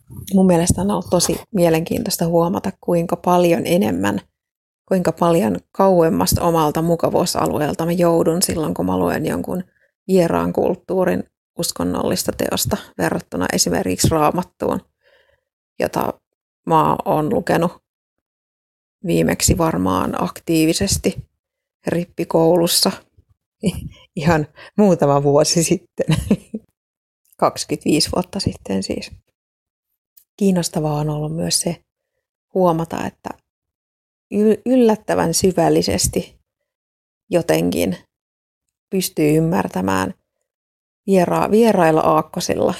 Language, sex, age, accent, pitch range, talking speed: Finnish, female, 30-49, native, 150-180 Hz, 85 wpm